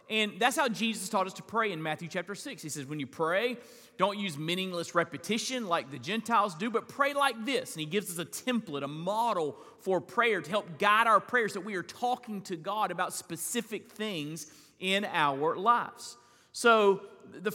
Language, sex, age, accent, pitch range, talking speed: English, male, 40-59, American, 165-230 Hz, 200 wpm